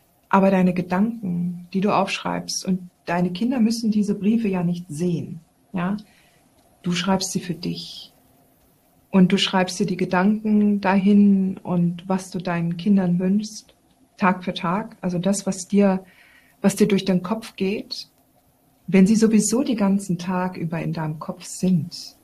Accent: German